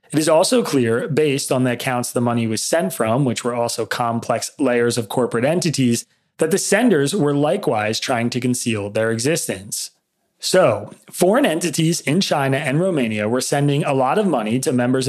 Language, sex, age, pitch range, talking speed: English, male, 30-49, 120-160 Hz, 185 wpm